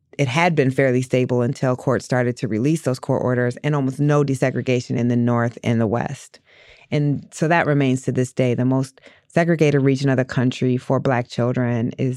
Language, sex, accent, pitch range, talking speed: English, female, American, 125-160 Hz, 200 wpm